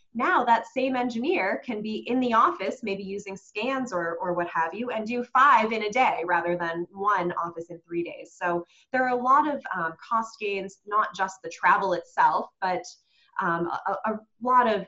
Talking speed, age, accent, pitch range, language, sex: 200 wpm, 20-39, American, 175-240 Hz, English, female